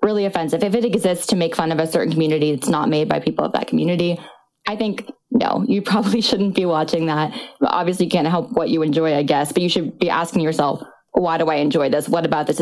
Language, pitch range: English, 160-220 Hz